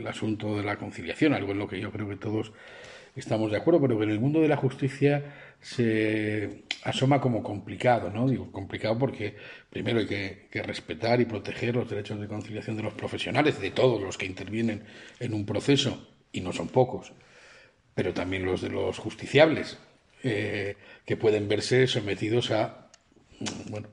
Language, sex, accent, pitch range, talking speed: Spanish, male, Spanish, 105-125 Hz, 180 wpm